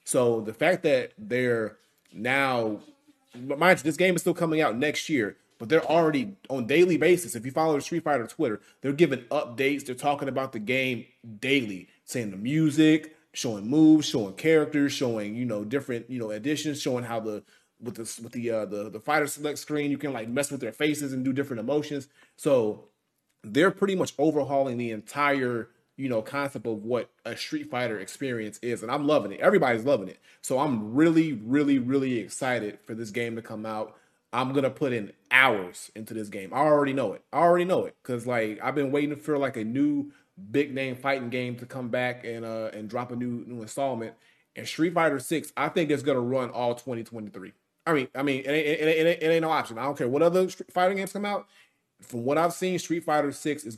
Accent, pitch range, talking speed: American, 120-155 Hz, 210 wpm